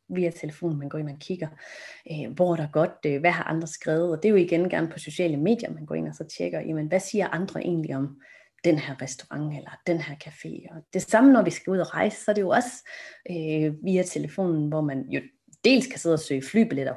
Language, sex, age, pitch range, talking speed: Danish, female, 30-49, 160-205 Hz, 245 wpm